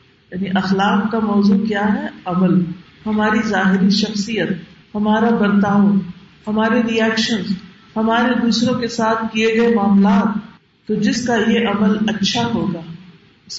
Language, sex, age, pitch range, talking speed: Urdu, female, 50-69, 190-265 Hz, 130 wpm